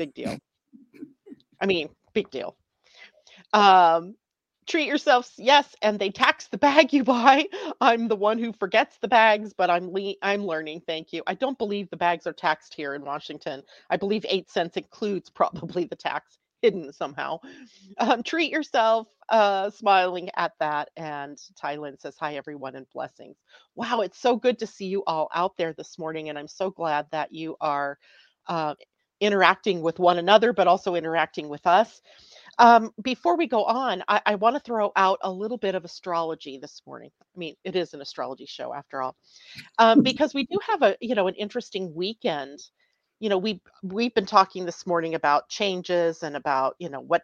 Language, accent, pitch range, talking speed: English, American, 165-225 Hz, 190 wpm